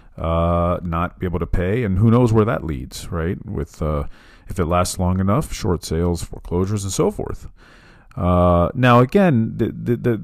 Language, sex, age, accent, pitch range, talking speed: English, male, 40-59, American, 85-110 Hz, 190 wpm